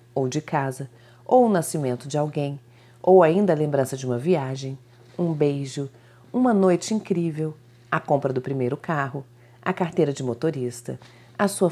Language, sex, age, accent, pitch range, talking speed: Portuguese, female, 40-59, Brazilian, 125-200 Hz, 160 wpm